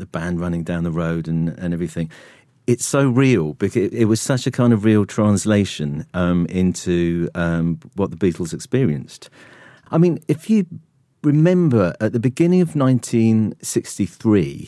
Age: 40-59